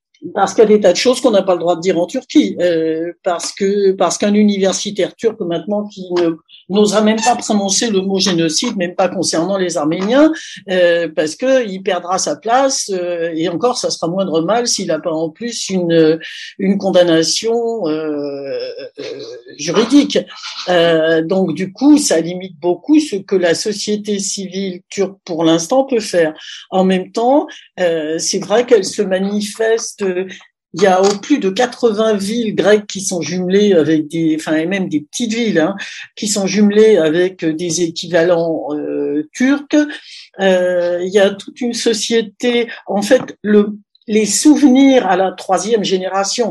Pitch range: 175-230 Hz